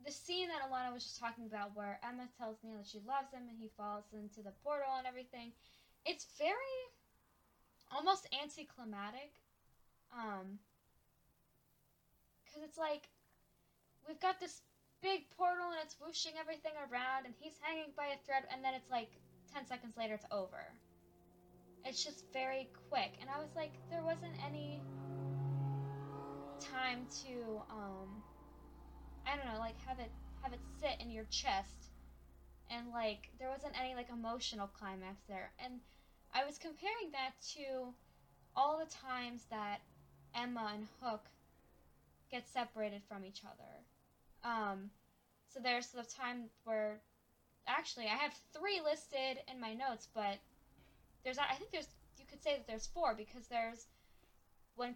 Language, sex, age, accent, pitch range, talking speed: English, female, 10-29, American, 210-285 Hz, 150 wpm